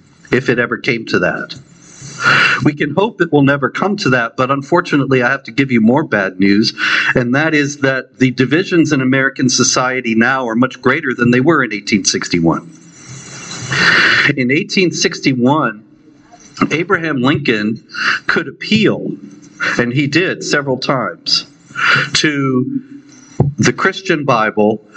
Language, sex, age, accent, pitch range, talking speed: English, male, 50-69, American, 120-150 Hz, 140 wpm